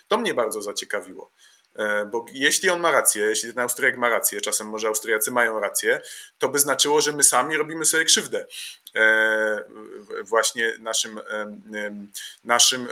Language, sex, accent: Polish, male, native